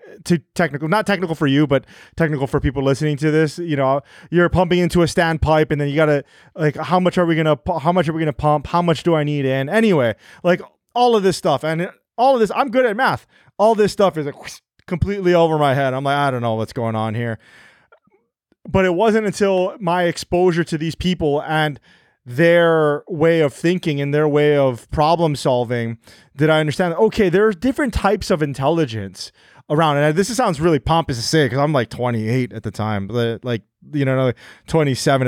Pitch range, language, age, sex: 140-180 Hz, English, 30-49, male